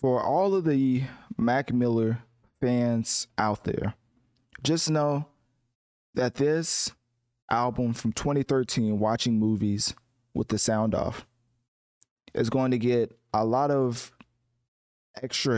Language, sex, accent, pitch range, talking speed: English, male, American, 110-125 Hz, 115 wpm